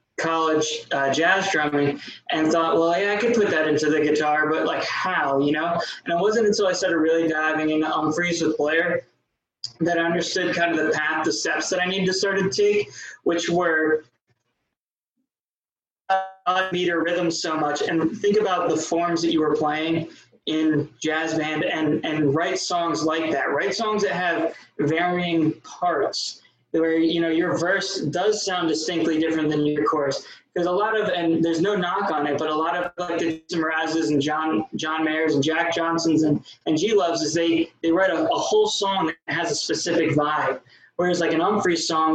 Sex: male